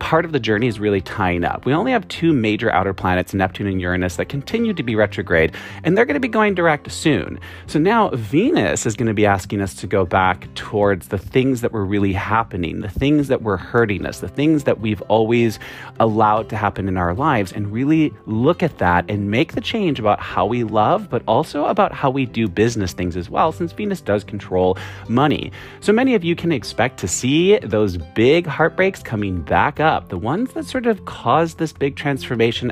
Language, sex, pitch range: English, male, 100-155 Hz